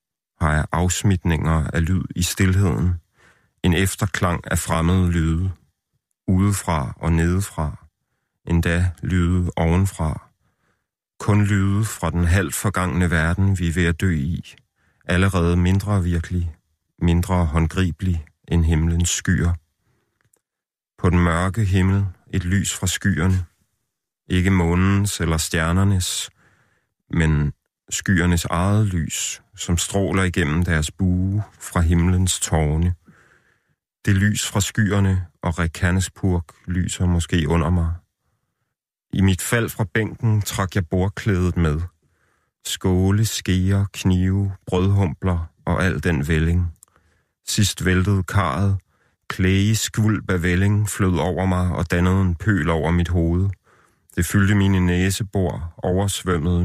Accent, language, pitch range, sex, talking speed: native, Danish, 85-95 Hz, male, 120 wpm